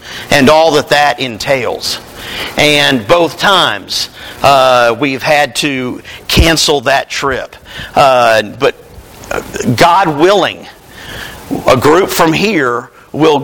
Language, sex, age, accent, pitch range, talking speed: English, male, 50-69, American, 145-180 Hz, 105 wpm